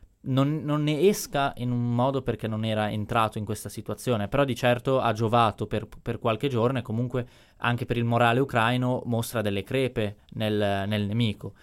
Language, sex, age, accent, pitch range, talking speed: Italian, male, 20-39, native, 105-120 Hz, 185 wpm